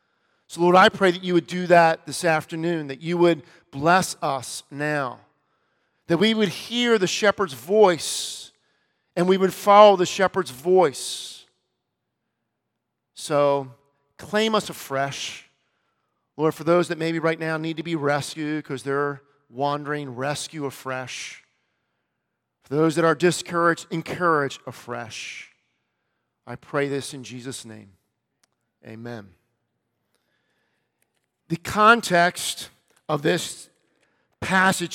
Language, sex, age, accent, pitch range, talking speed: English, male, 40-59, American, 155-205 Hz, 120 wpm